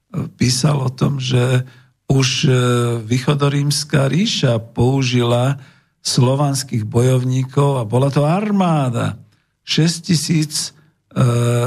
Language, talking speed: Slovak, 85 wpm